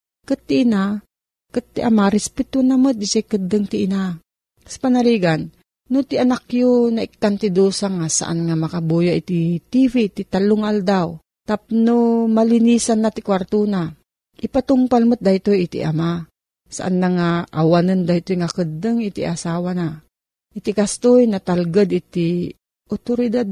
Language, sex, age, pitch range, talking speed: Filipino, female, 40-59, 175-225 Hz, 130 wpm